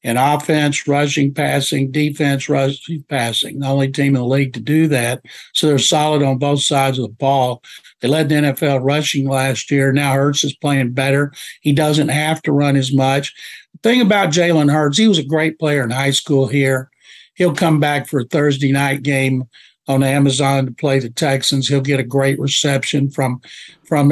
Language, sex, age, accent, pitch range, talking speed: English, male, 60-79, American, 135-155 Hz, 195 wpm